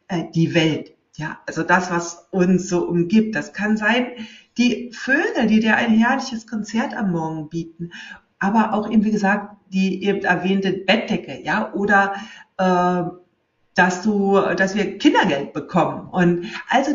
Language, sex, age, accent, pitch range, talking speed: German, female, 60-79, German, 180-225 Hz, 150 wpm